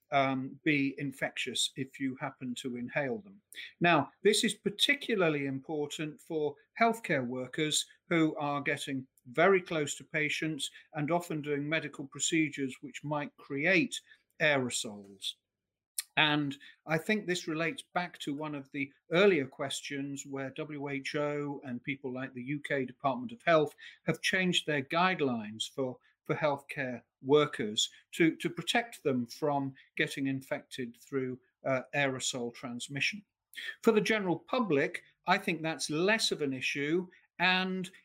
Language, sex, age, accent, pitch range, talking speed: English, male, 50-69, British, 135-170 Hz, 135 wpm